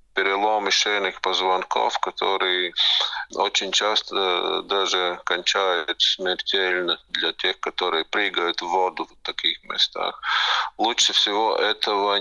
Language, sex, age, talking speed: Russian, male, 40-59, 105 wpm